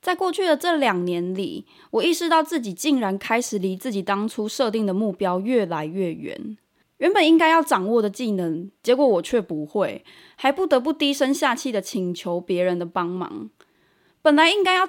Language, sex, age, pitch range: Chinese, female, 20-39, 185-270 Hz